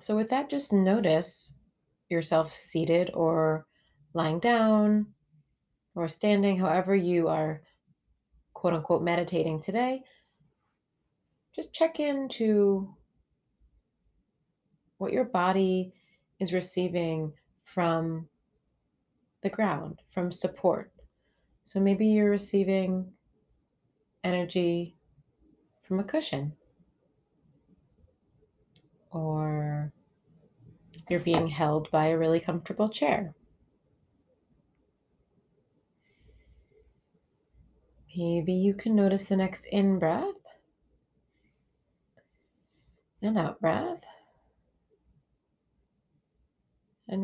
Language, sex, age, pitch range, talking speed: English, female, 30-49, 165-200 Hz, 75 wpm